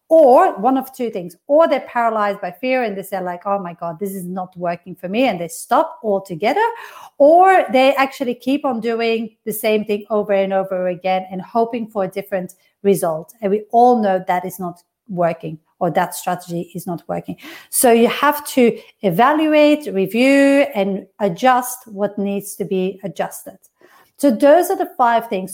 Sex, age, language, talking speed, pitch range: female, 40-59, English, 185 wpm, 190-250 Hz